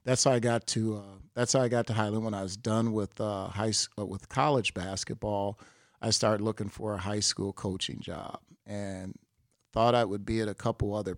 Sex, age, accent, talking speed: male, 40-59, American, 225 wpm